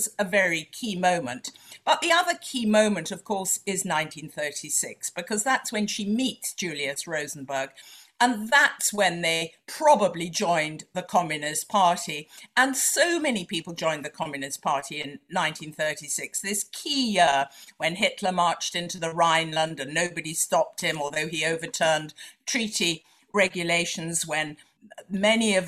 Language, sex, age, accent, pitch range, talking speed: English, female, 50-69, British, 170-225 Hz, 140 wpm